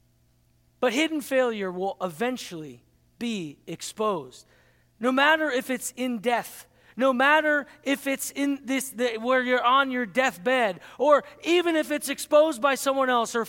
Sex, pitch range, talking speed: male, 215-280 Hz, 150 wpm